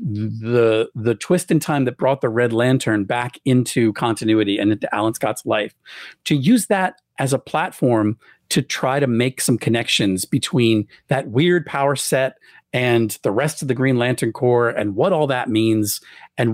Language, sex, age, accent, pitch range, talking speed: English, male, 40-59, American, 115-145 Hz, 180 wpm